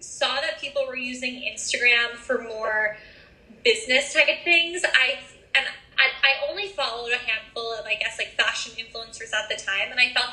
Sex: female